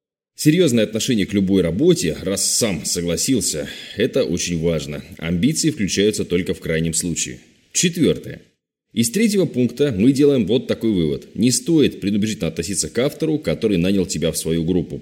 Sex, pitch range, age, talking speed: male, 85-120 Hz, 20-39, 150 wpm